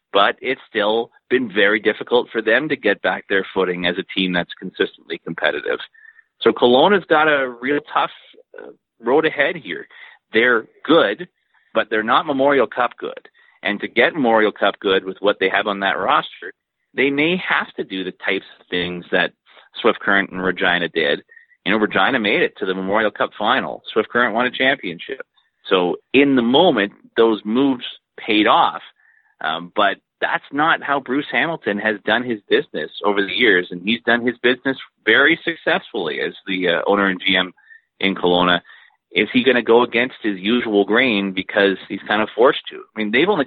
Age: 40-59